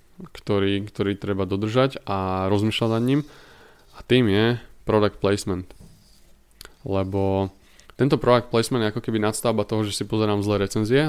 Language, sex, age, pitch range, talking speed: Slovak, male, 20-39, 100-120 Hz, 145 wpm